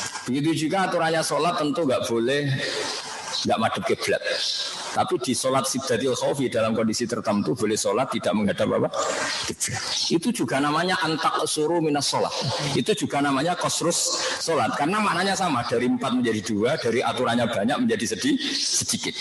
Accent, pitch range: native, 125-205 Hz